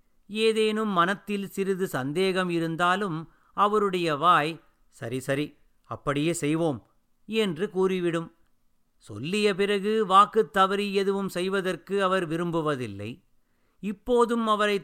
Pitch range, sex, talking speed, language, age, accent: 155-200 Hz, male, 95 wpm, Tamil, 50-69, native